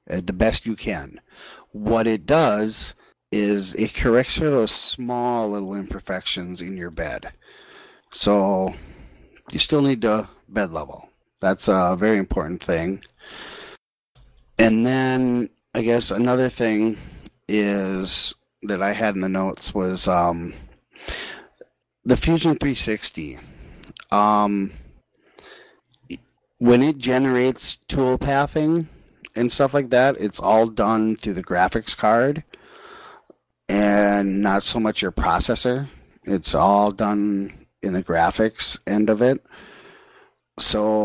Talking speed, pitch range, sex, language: 120 wpm, 95-120 Hz, male, English